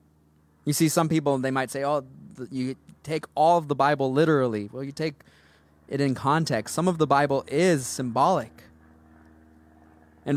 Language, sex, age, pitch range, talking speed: English, male, 20-39, 120-160 Hz, 160 wpm